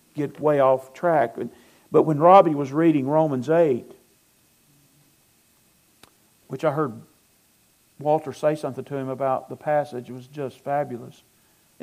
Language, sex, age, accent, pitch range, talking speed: English, male, 50-69, American, 130-165 Hz, 130 wpm